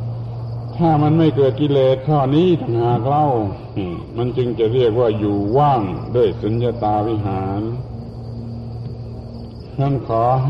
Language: Thai